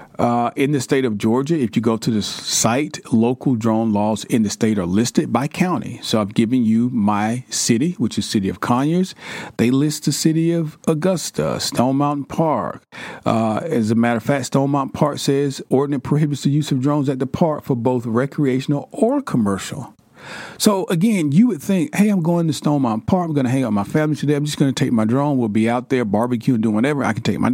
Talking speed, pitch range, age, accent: 230 wpm, 110-150 Hz, 40-59, American